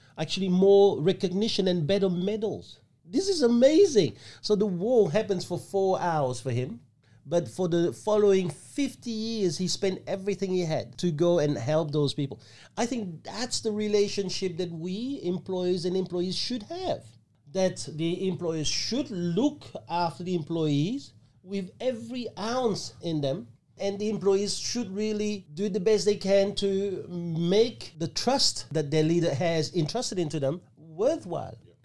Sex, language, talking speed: male, English, 155 wpm